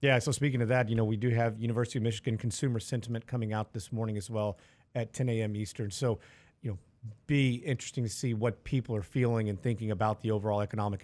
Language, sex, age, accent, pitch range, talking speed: English, male, 40-59, American, 110-135 Hz, 230 wpm